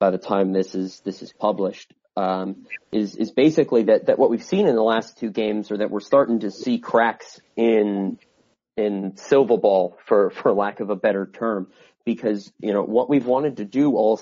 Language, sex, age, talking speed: English, male, 30-49, 205 wpm